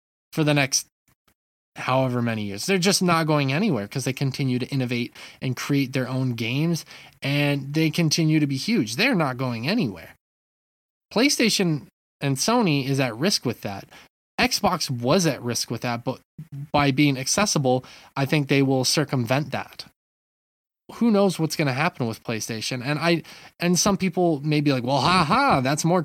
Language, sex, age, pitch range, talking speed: English, male, 20-39, 130-170 Hz, 175 wpm